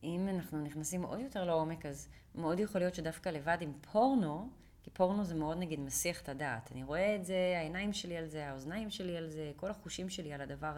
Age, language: 30-49, Hebrew